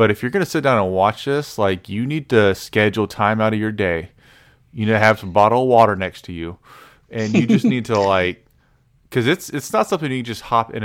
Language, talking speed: English, 250 wpm